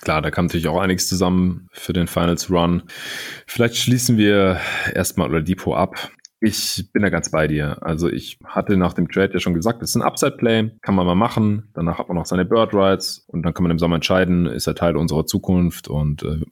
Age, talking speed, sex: 30-49, 220 wpm, male